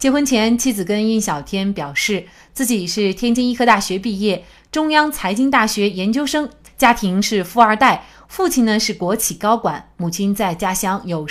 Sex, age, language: female, 30-49, Chinese